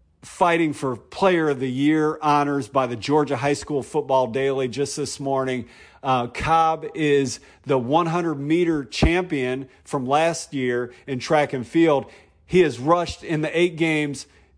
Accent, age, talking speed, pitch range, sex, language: American, 50-69, 155 wpm, 130-160 Hz, male, English